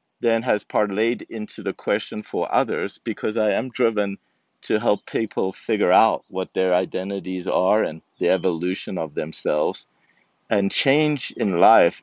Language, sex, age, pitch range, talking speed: English, male, 50-69, 85-100 Hz, 150 wpm